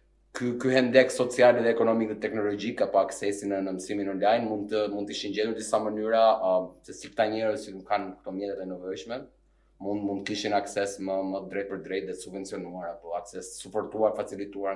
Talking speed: 140 wpm